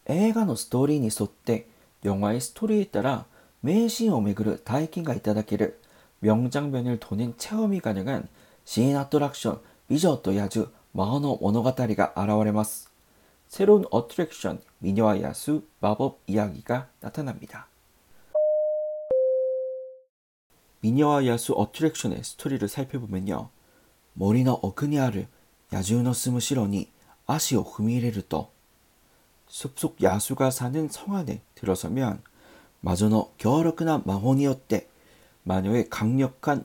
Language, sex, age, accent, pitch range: Korean, male, 40-59, native, 100-135 Hz